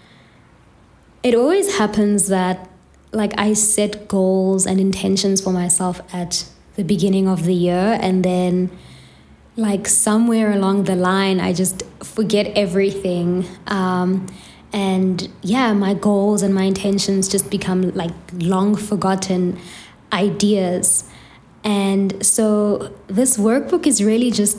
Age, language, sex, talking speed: 20-39, English, female, 120 wpm